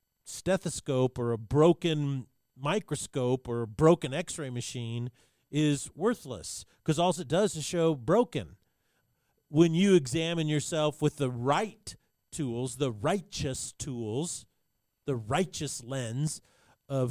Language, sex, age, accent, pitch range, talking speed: English, male, 40-59, American, 130-170 Hz, 120 wpm